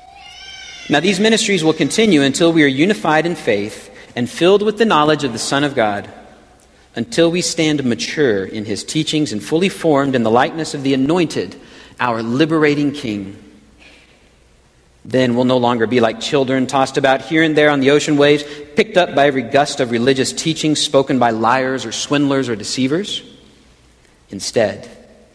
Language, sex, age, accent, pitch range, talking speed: English, male, 50-69, American, 115-165 Hz, 170 wpm